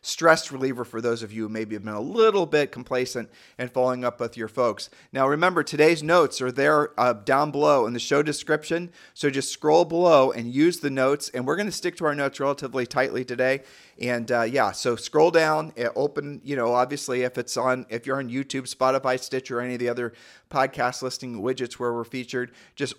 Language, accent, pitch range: English, American, 120-145 Hz